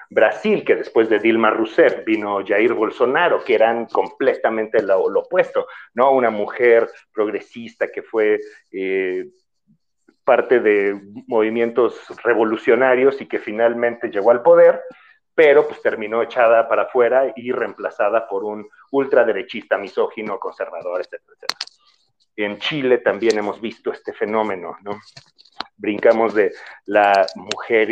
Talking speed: 125 wpm